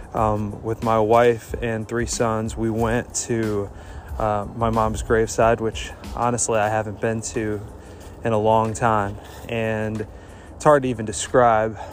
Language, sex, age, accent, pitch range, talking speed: English, male, 20-39, American, 100-115 Hz, 150 wpm